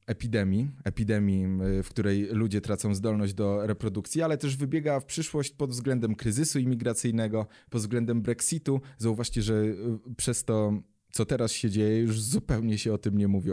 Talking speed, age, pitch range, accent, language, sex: 160 wpm, 20-39, 105-125 Hz, native, Polish, male